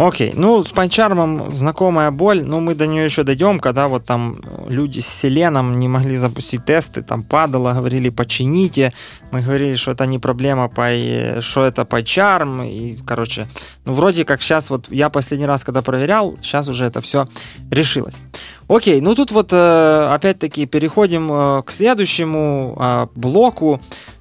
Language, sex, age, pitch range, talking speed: Ukrainian, male, 20-39, 125-165 Hz, 160 wpm